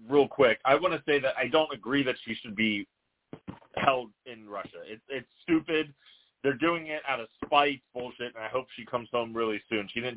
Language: English